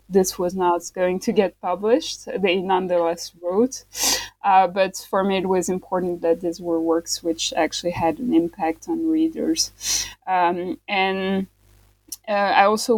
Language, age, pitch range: English, 20-39, 175-210 Hz